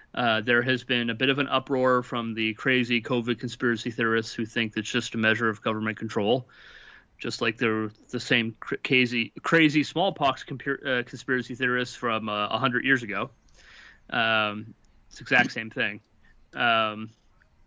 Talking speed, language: 155 wpm, English